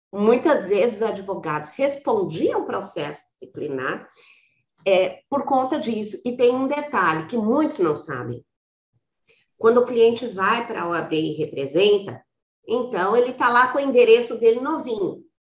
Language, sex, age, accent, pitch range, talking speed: Portuguese, female, 40-59, Brazilian, 200-295 Hz, 145 wpm